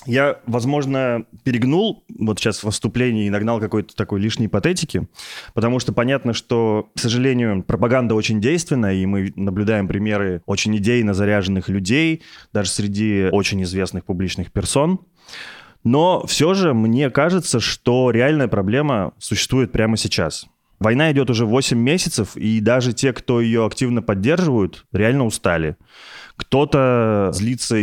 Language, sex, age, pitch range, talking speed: Russian, male, 20-39, 100-125 Hz, 135 wpm